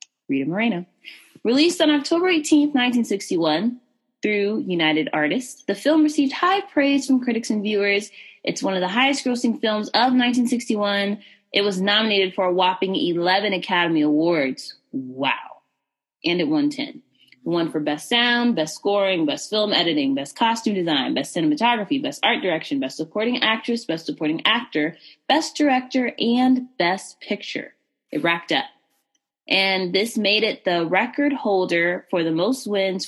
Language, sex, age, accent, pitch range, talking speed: English, female, 20-39, American, 175-275 Hz, 155 wpm